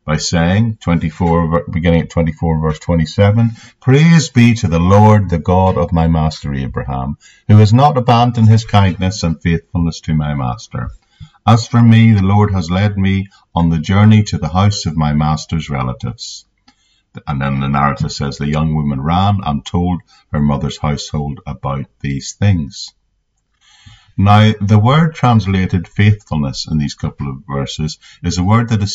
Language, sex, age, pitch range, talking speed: English, male, 50-69, 80-105 Hz, 165 wpm